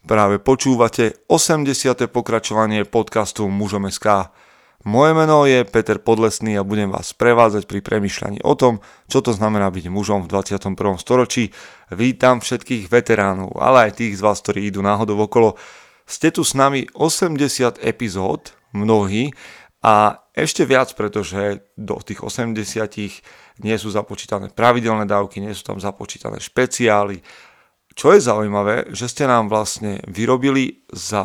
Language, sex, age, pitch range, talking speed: Slovak, male, 30-49, 105-125 Hz, 140 wpm